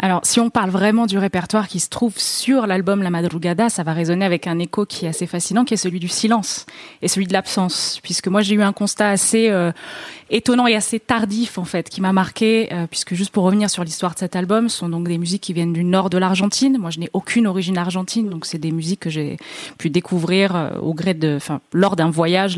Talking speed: 245 wpm